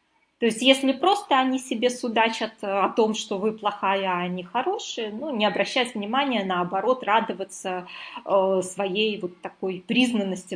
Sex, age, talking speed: female, 20-39, 150 wpm